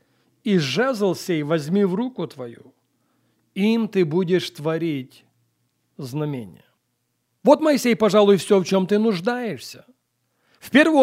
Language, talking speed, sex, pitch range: Russian, 120 wpm, male, 160-215 Hz